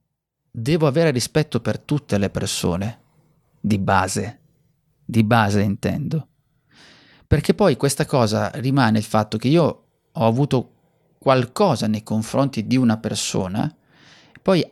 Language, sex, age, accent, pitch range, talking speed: Italian, male, 30-49, native, 110-155 Hz, 120 wpm